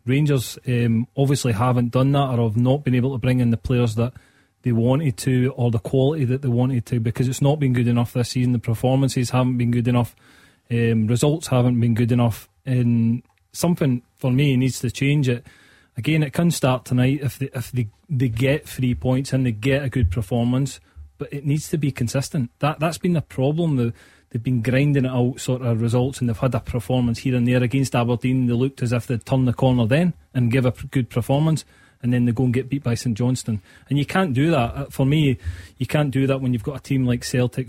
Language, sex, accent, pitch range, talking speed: English, male, British, 120-135 Hz, 235 wpm